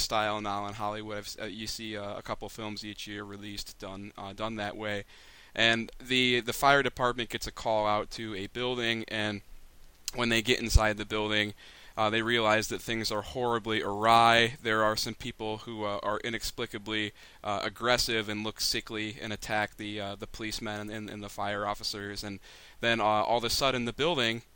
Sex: male